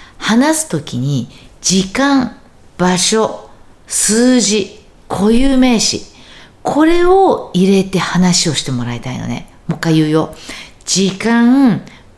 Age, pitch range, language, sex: 50-69, 135-225 Hz, Japanese, female